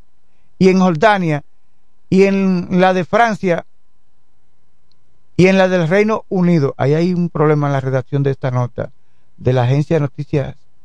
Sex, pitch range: male, 140-200 Hz